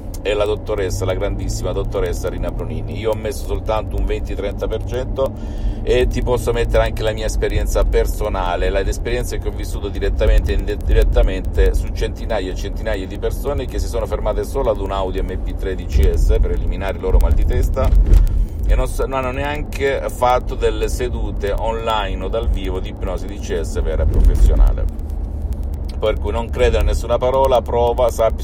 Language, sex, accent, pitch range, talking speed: Italian, male, native, 80-100 Hz, 175 wpm